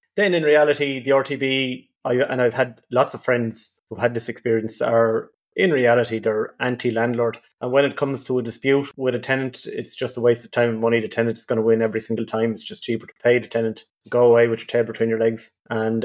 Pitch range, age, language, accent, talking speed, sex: 115-135 Hz, 30-49, English, Irish, 235 wpm, male